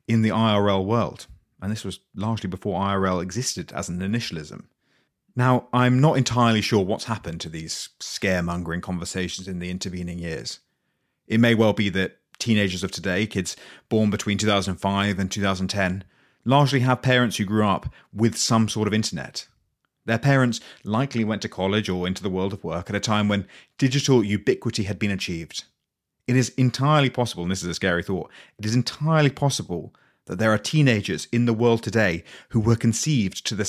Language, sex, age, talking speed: English, male, 30-49, 180 wpm